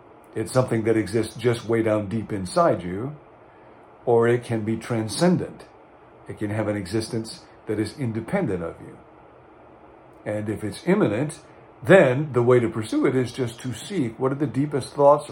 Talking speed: 170 wpm